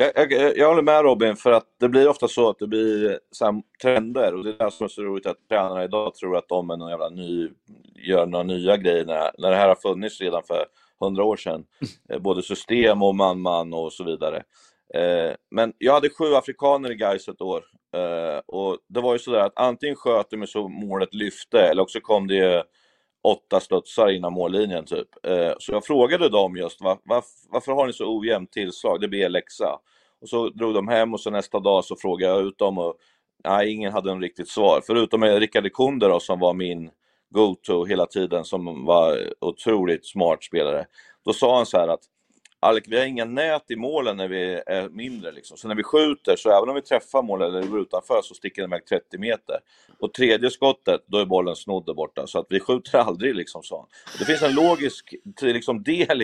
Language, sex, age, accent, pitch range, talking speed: Swedish, male, 30-49, native, 95-155 Hz, 205 wpm